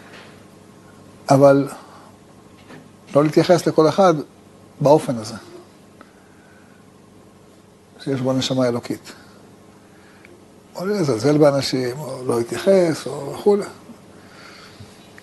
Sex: male